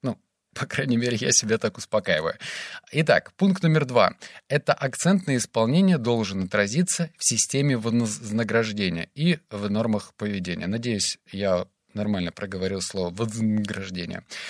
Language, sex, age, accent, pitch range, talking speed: Russian, male, 20-39, native, 105-150 Hz, 120 wpm